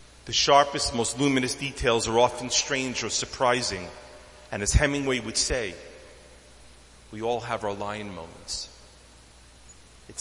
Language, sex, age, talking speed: English, male, 40-59, 130 wpm